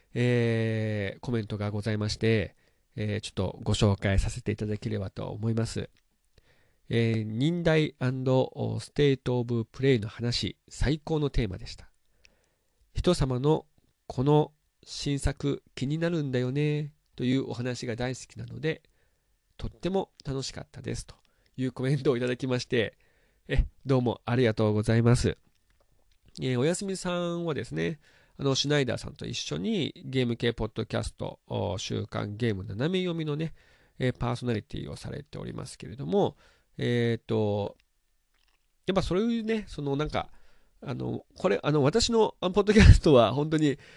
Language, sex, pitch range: Japanese, male, 110-145 Hz